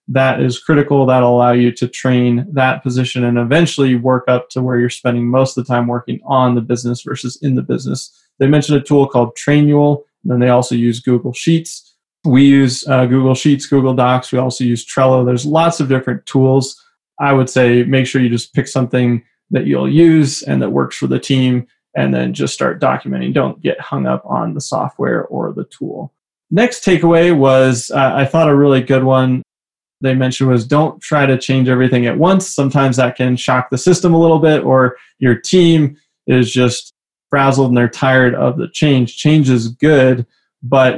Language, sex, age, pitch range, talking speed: English, male, 30-49, 125-140 Hz, 200 wpm